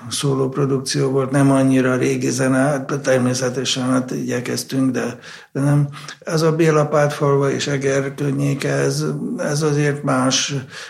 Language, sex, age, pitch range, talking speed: Hungarian, male, 60-79, 125-145 Hz, 140 wpm